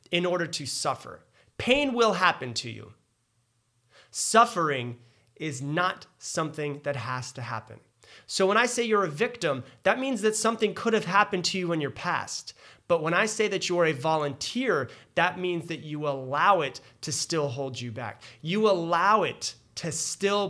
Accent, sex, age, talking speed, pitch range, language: American, male, 30-49, 175 wpm, 130-205 Hz, English